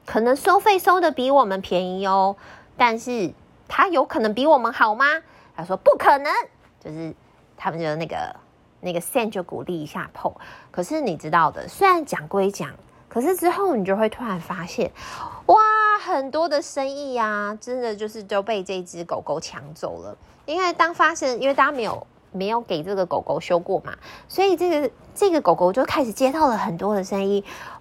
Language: Chinese